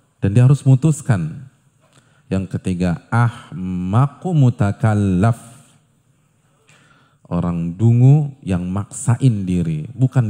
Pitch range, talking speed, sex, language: 105-145 Hz, 75 wpm, male, Indonesian